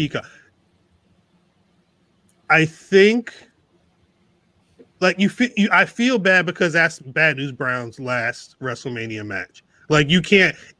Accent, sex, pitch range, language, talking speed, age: American, male, 125-165 Hz, English, 105 wpm, 30-49